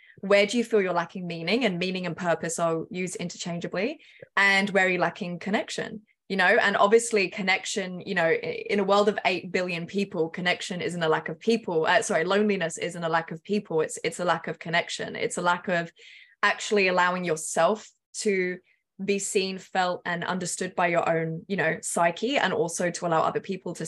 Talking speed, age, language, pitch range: 200 wpm, 20-39, English, 175-205 Hz